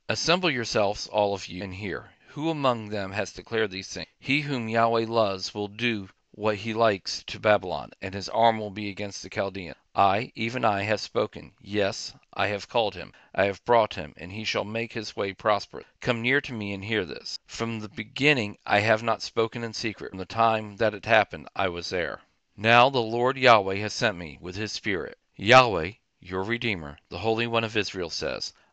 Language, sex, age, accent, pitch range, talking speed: English, male, 40-59, American, 100-115 Hz, 205 wpm